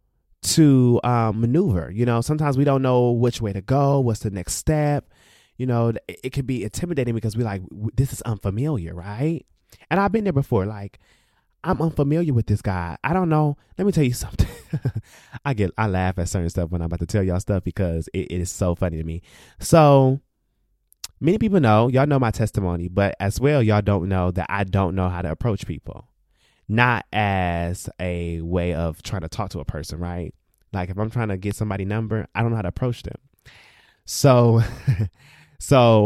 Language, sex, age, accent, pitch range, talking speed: English, male, 20-39, American, 95-125 Hz, 205 wpm